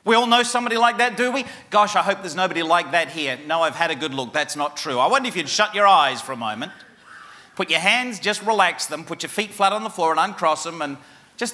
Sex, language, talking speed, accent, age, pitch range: male, English, 275 wpm, Australian, 40-59, 115-190 Hz